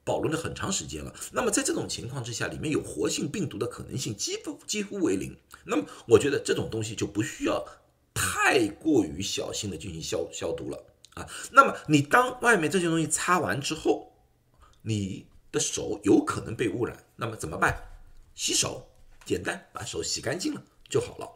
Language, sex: Chinese, male